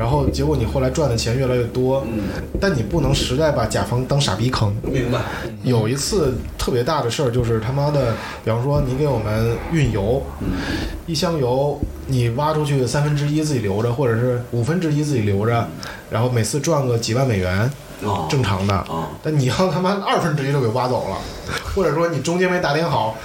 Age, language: 20-39, Chinese